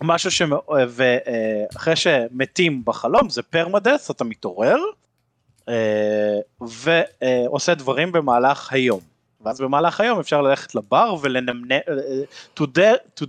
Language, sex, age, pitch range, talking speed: Hebrew, male, 30-49, 115-155 Hz, 105 wpm